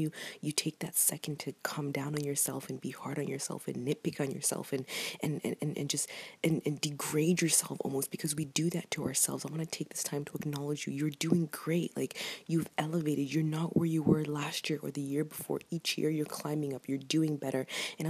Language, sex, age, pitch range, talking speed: English, female, 20-39, 145-165 Hz, 230 wpm